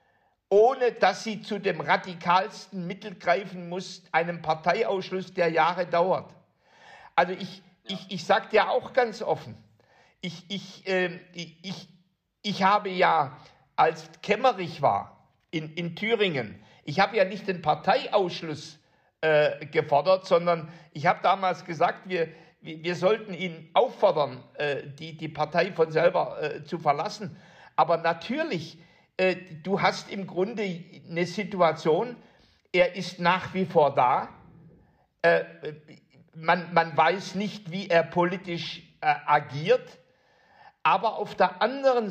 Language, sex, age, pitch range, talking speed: German, male, 60-79, 165-195 Hz, 125 wpm